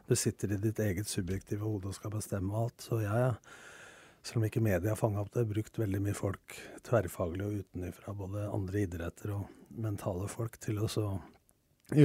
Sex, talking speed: male, 170 wpm